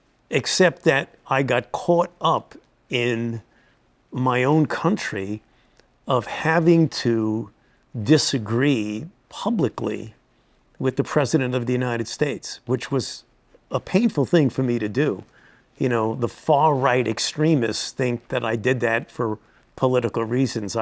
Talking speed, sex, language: 125 wpm, male, English